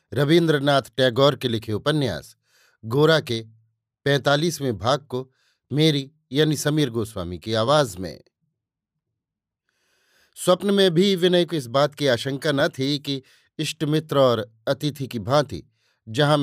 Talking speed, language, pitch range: 130 wpm, Hindi, 115-155 Hz